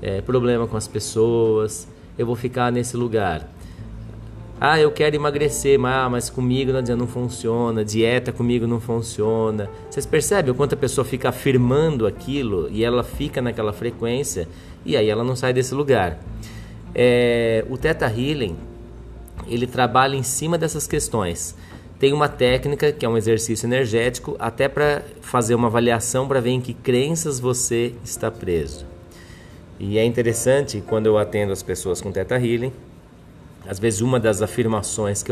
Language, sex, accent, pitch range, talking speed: Portuguese, male, Brazilian, 105-125 Hz, 155 wpm